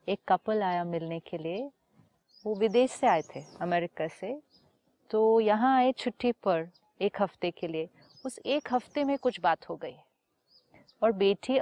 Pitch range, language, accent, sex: 185-240 Hz, Hindi, native, female